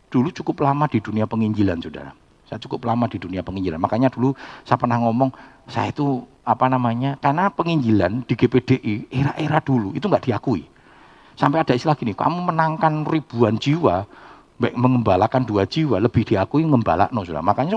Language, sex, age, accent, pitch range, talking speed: Indonesian, male, 50-69, native, 110-160 Hz, 155 wpm